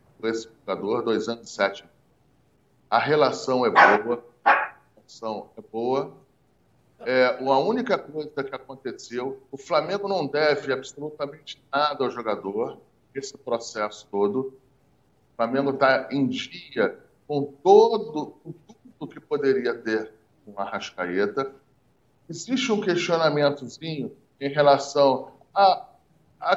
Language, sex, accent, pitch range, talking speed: Portuguese, male, Brazilian, 135-215 Hz, 110 wpm